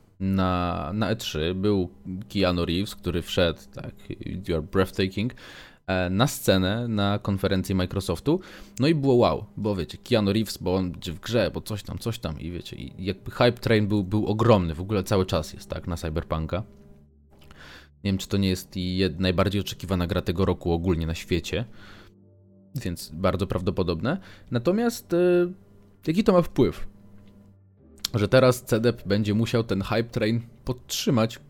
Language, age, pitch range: Polish, 20-39, 95-120 Hz